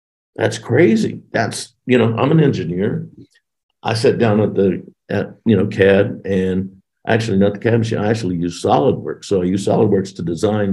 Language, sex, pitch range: English, male, 100-115 Hz